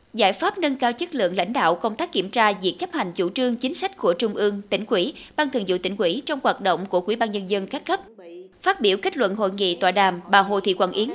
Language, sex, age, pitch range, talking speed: Vietnamese, female, 20-39, 200-290 Hz, 280 wpm